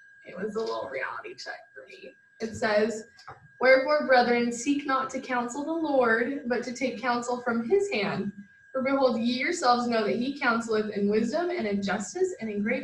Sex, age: female, 10-29